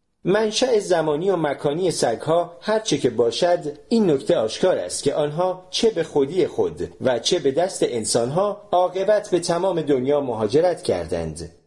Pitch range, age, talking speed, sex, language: 125-180 Hz, 40-59, 155 wpm, male, Persian